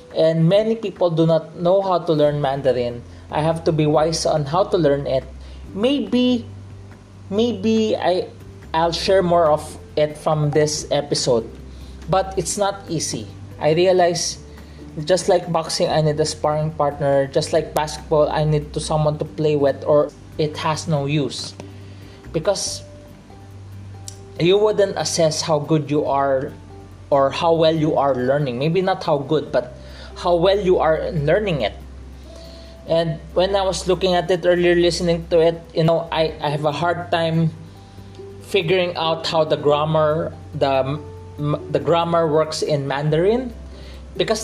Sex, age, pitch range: male, 20-39, 120-175 Hz